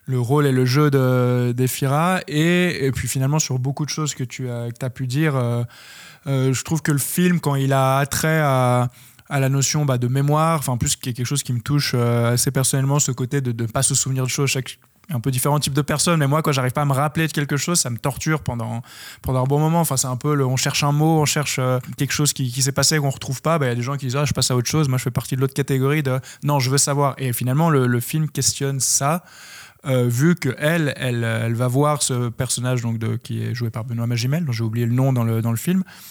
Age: 20-39